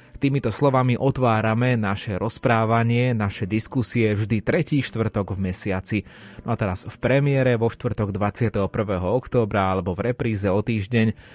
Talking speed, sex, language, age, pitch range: 135 wpm, male, Slovak, 20-39, 100-120 Hz